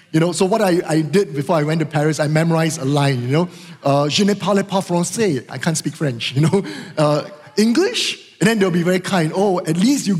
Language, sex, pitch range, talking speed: English, male, 180-245 Hz, 245 wpm